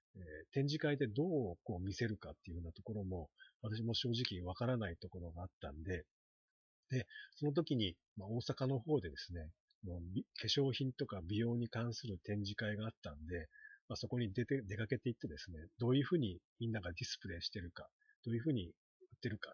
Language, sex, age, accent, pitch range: Japanese, male, 40-59, native, 95-135 Hz